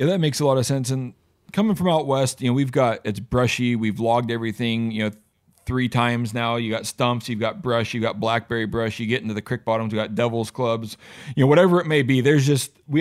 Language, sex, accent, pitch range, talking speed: English, male, American, 115-135 Hz, 255 wpm